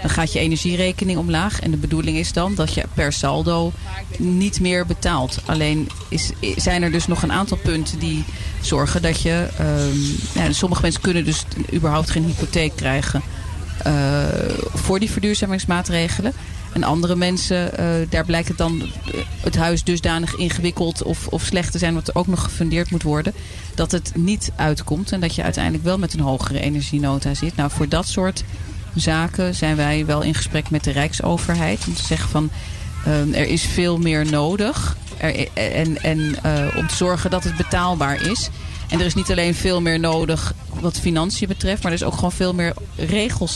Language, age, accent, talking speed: Dutch, 40-59, Dutch, 185 wpm